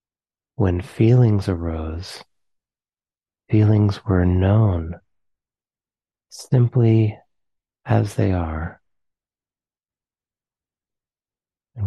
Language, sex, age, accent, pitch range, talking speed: English, male, 30-49, American, 90-110 Hz, 55 wpm